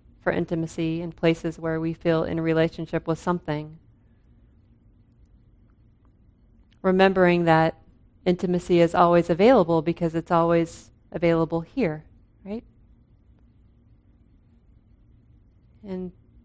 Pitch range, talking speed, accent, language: 160-200 Hz, 90 wpm, American, English